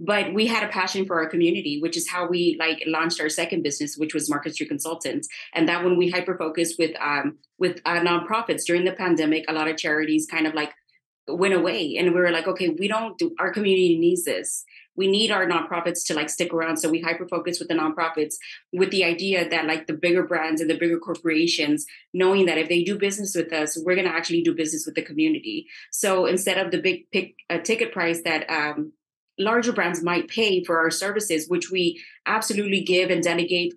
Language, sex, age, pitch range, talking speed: English, female, 20-39, 165-190 Hz, 215 wpm